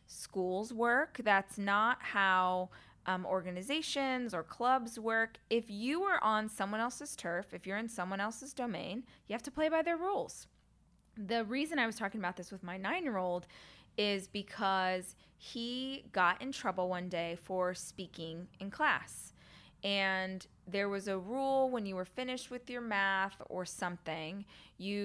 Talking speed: 160 wpm